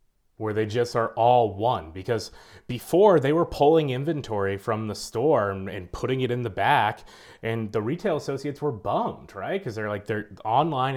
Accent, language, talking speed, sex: American, English, 180 wpm, male